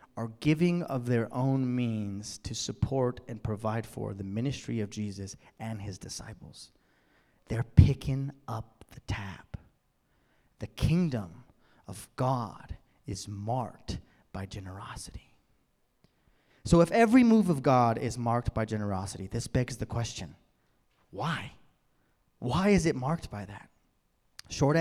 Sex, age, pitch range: male, 30-49, 105-140 Hz